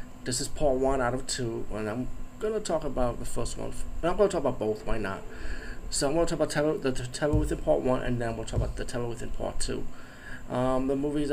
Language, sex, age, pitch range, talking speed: English, male, 20-39, 110-130 Hz, 265 wpm